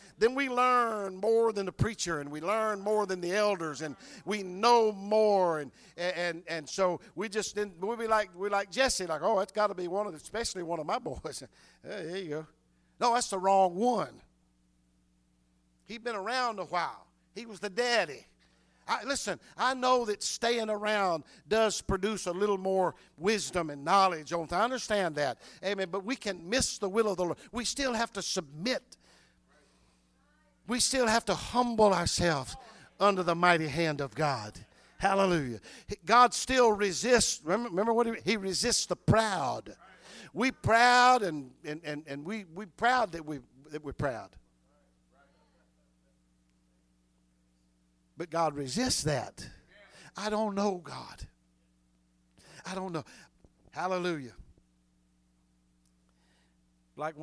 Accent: American